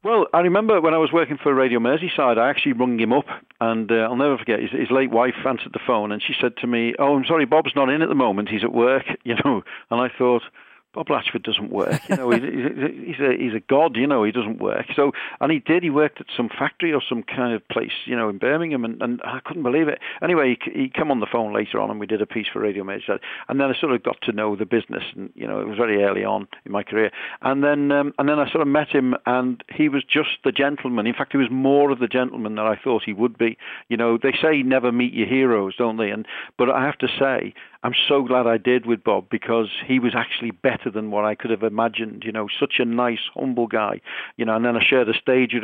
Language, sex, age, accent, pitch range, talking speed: English, male, 50-69, British, 110-135 Hz, 270 wpm